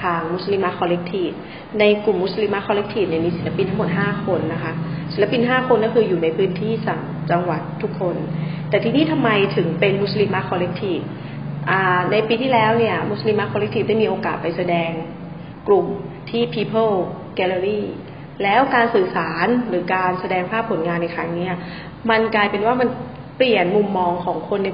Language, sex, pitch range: Thai, female, 175-215 Hz